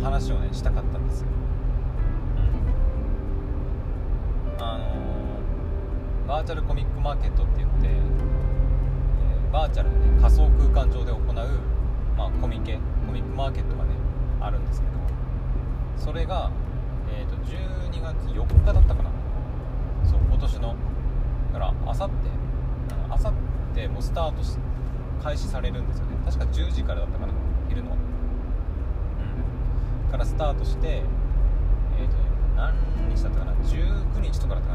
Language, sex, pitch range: Japanese, male, 65-70 Hz